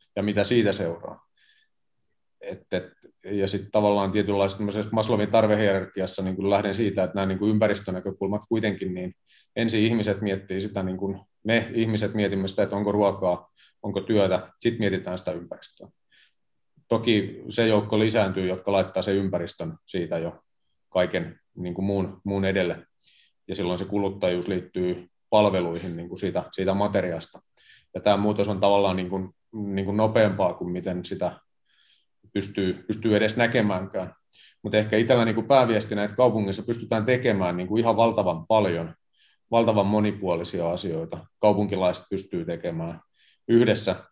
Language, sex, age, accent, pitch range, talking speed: Finnish, male, 30-49, native, 95-105 Hz, 135 wpm